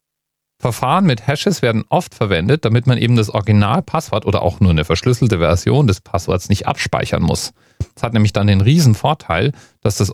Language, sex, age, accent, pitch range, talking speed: German, male, 40-59, German, 100-130 Hz, 185 wpm